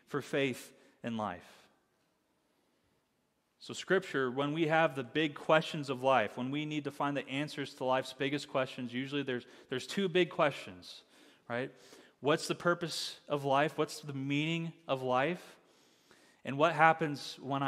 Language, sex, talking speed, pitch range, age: English, male, 155 wpm, 130-170 Hz, 30-49